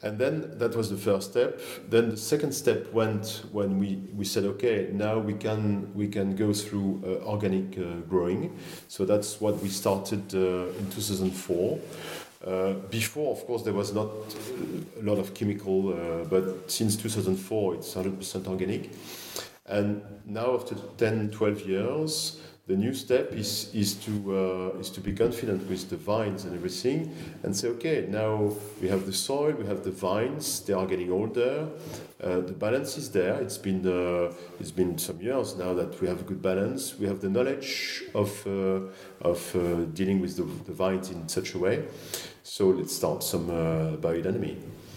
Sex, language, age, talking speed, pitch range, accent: male, English, 40-59, 175 wpm, 95-110 Hz, French